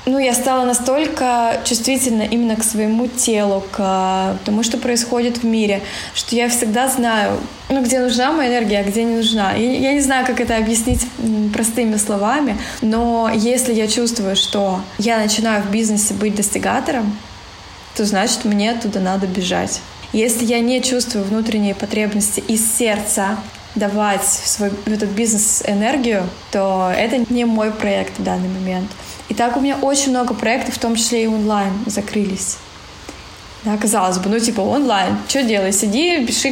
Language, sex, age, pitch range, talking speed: Russian, female, 20-39, 210-245 Hz, 165 wpm